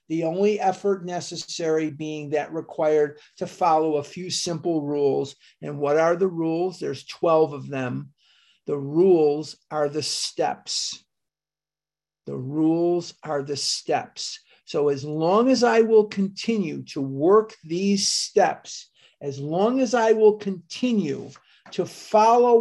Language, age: English, 50-69